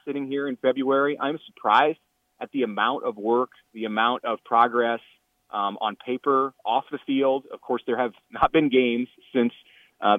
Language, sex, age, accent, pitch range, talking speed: English, male, 30-49, American, 110-135 Hz, 175 wpm